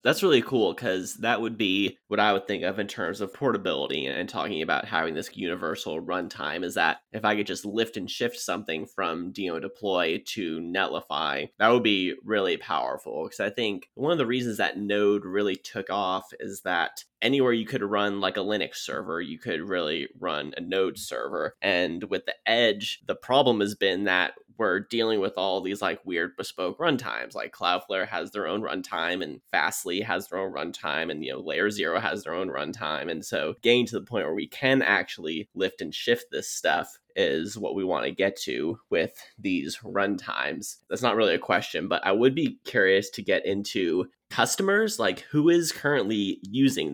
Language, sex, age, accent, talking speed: English, male, 20-39, American, 200 wpm